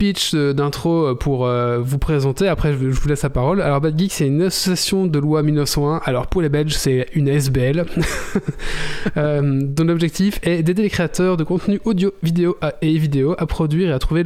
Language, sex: French, male